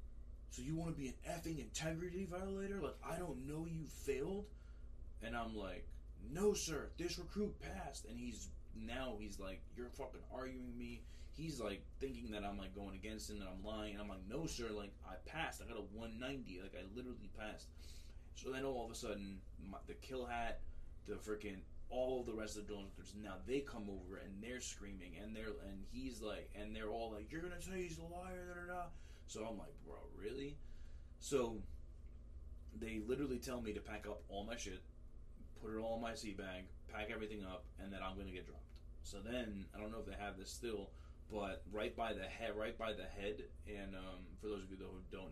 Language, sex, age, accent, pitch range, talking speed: English, male, 20-39, American, 90-115 Hz, 220 wpm